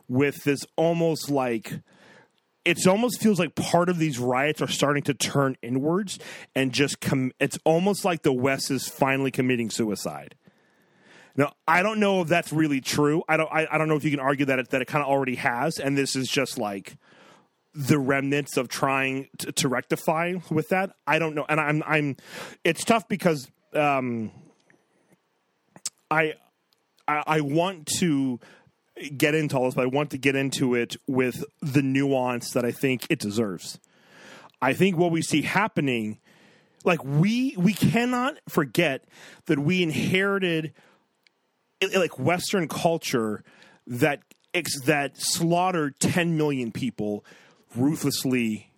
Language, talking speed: English, 155 wpm